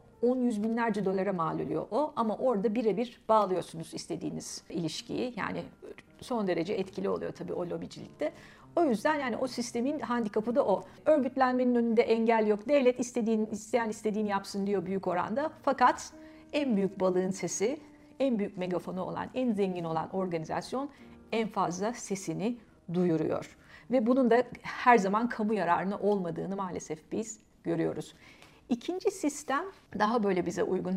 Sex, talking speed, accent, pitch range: female, 145 wpm, native, 195-255 Hz